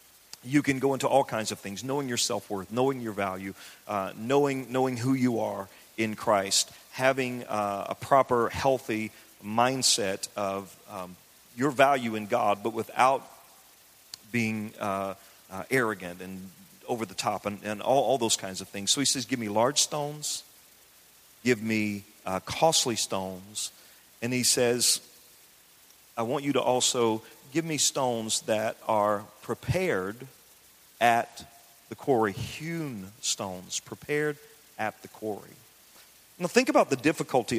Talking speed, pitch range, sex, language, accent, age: 145 wpm, 110-145 Hz, male, English, American, 40-59